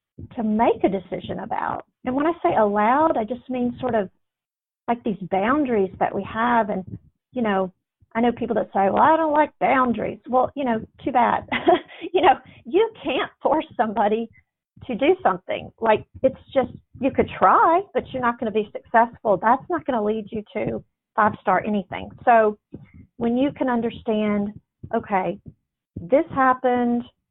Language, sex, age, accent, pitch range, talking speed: English, female, 40-59, American, 200-255 Hz, 175 wpm